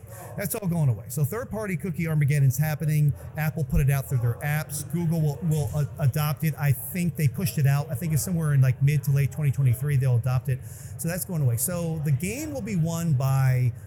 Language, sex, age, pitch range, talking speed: English, male, 40-59, 135-160 Hz, 225 wpm